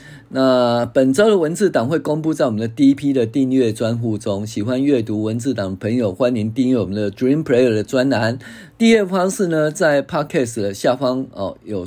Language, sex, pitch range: Chinese, male, 110-135 Hz